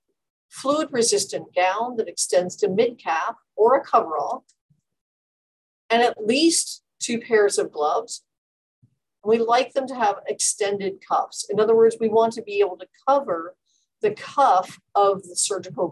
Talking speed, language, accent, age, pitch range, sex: 150 wpm, English, American, 50-69, 185-275 Hz, female